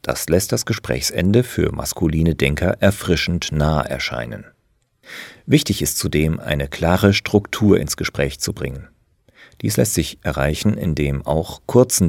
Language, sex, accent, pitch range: German, male, German, 75-115 Hz